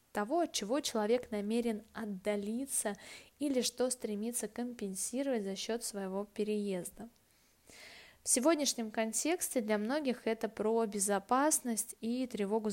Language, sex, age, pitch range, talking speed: Russian, female, 20-39, 200-245 Hz, 115 wpm